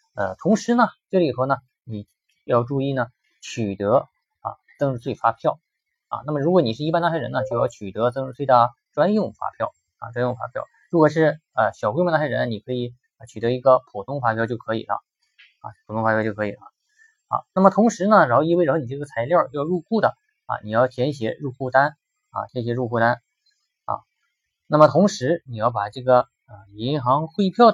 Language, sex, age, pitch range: Chinese, male, 20-39, 115-160 Hz